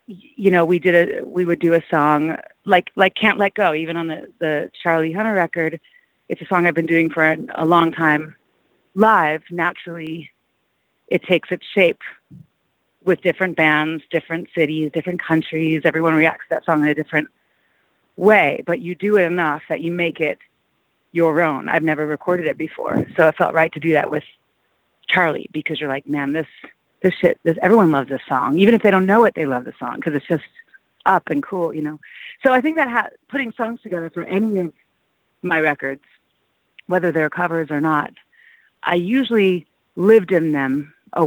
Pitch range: 150-180 Hz